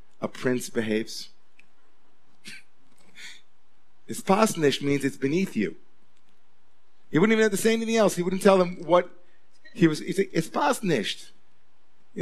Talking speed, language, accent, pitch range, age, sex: 135 wpm, English, American, 135-180 Hz, 40-59, male